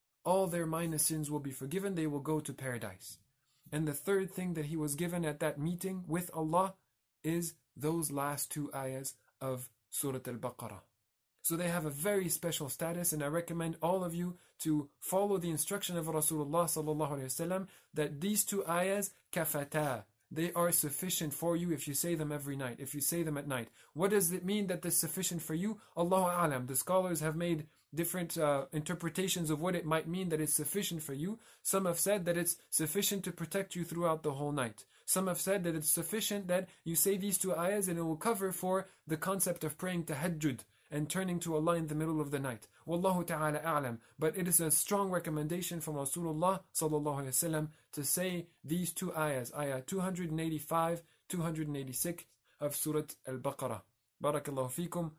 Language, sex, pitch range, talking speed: English, male, 145-175 Hz, 185 wpm